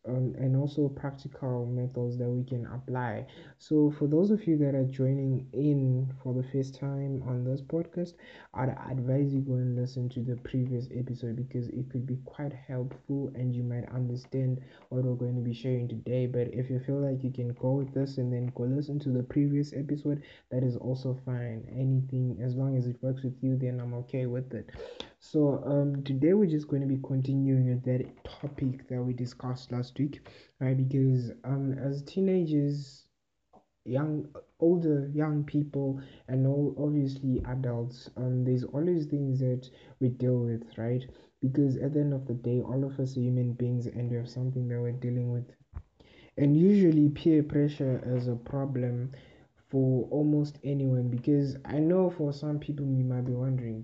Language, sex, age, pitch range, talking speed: English, male, 20-39, 125-140 Hz, 185 wpm